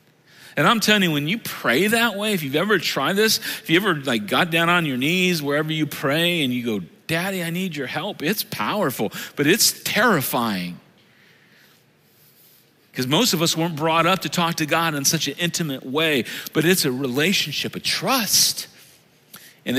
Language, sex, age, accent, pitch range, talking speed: English, male, 40-59, American, 130-180 Hz, 190 wpm